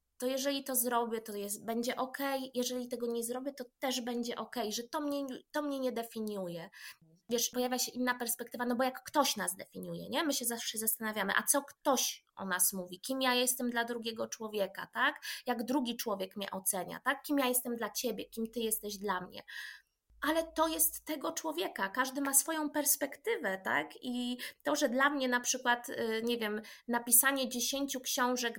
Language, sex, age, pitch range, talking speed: Polish, female, 20-39, 235-290 Hz, 190 wpm